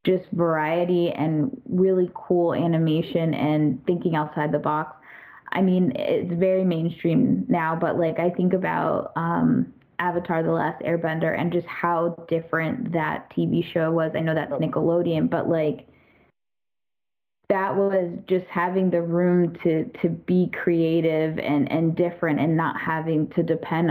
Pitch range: 160-185 Hz